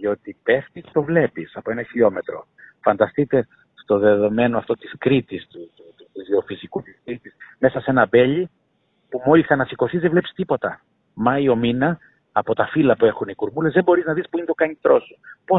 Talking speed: 200 wpm